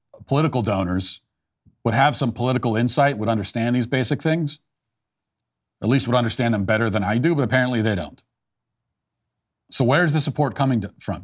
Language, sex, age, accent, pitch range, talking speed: English, male, 40-59, American, 115-150 Hz, 165 wpm